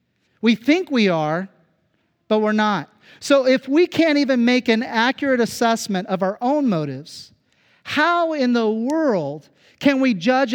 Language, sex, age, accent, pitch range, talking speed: English, male, 40-59, American, 180-245 Hz, 155 wpm